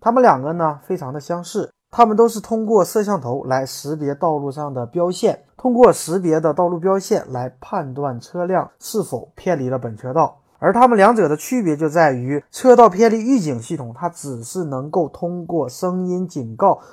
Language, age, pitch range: Chinese, 20-39, 135-195 Hz